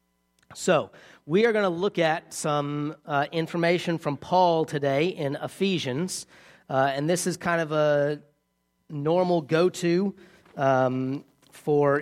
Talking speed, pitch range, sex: 130 wpm, 135-165 Hz, male